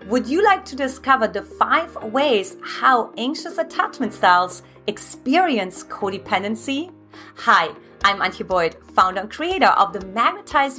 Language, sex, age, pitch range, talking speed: English, female, 30-49, 205-300 Hz, 135 wpm